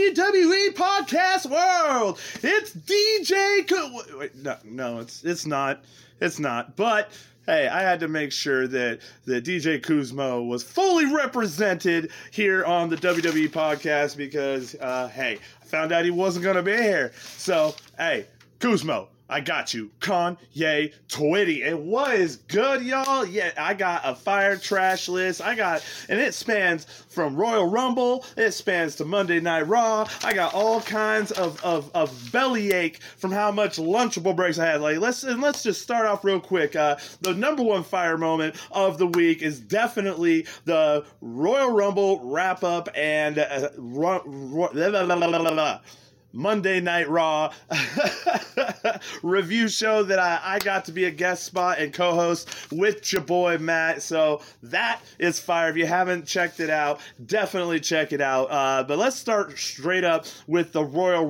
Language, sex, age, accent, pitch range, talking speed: English, male, 30-49, American, 155-215 Hz, 160 wpm